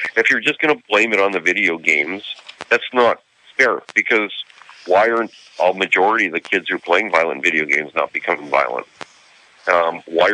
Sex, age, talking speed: male, 40-59, 190 wpm